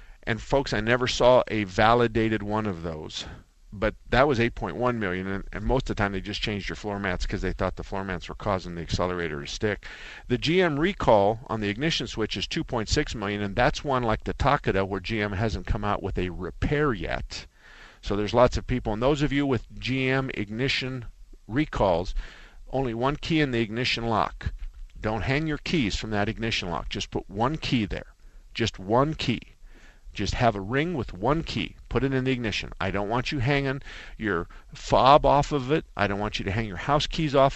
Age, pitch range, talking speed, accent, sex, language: 50-69, 100-125 Hz, 210 wpm, American, male, English